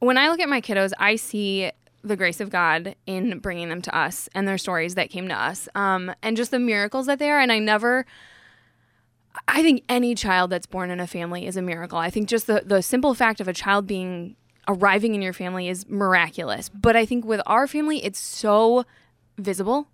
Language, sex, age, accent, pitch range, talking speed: English, female, 20-39, American, 185-225 Hz, 225 wpm